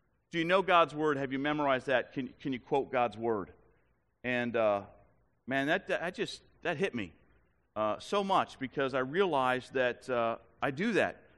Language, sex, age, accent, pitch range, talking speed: English, male, 40-59, American, 130-190 Hz, 185 wpm